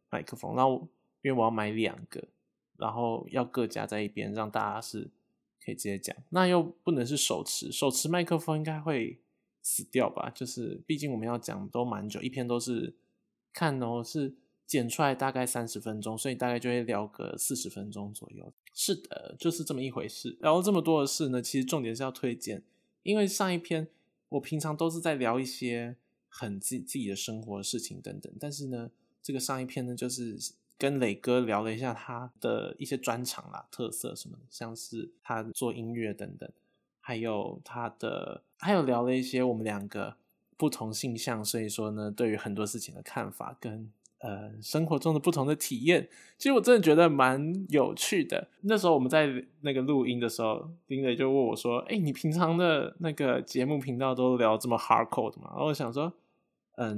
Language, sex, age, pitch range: Chinese, male, 20-39, 115-150 Hz